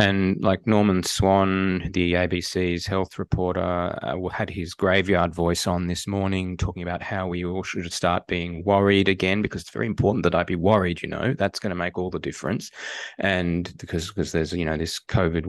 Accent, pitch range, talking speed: Australian, 90-105 Hz, 200 wpm